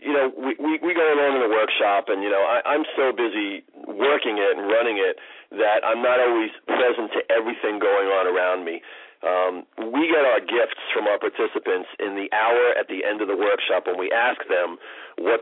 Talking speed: 215 wpm